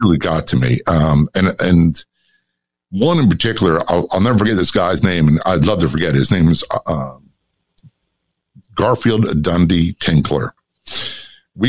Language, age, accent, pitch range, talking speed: English, 50-69, American, 75-95 Hz, 155 wpm